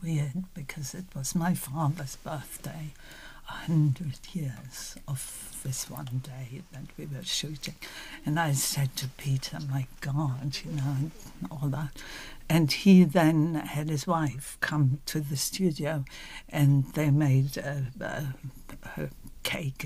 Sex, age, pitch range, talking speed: female, 60-79, 140-170 Hz, 140 wpm